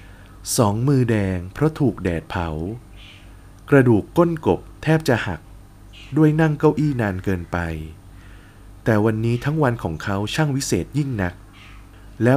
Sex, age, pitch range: male, 20-39, 95-135 Hz